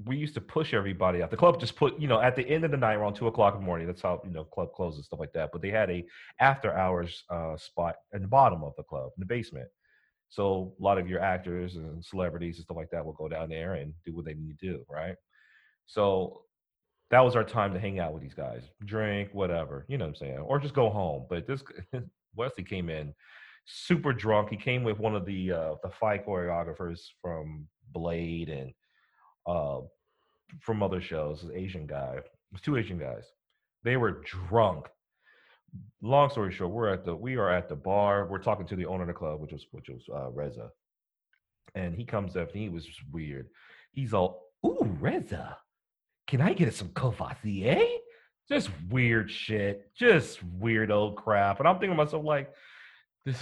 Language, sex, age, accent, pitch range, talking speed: English, male, 40-59, American, 85-115 Hz, 210 wpm